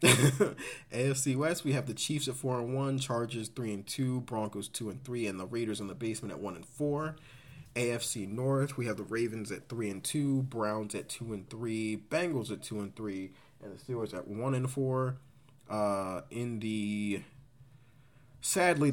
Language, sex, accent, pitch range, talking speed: English, male, American, 105-135 Hz, 140 wpm